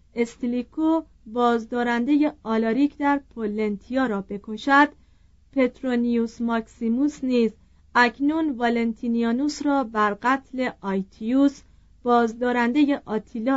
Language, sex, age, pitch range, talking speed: Persian, female, 40-59, 215-290 Hz, 80 wpm